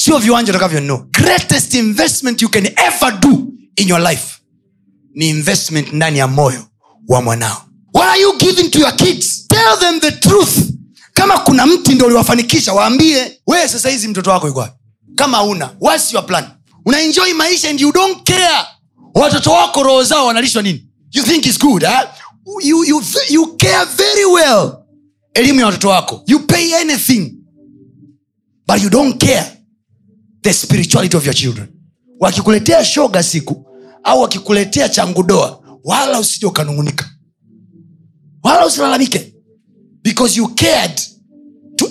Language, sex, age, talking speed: Swahili, male, 30-49, 130 wpm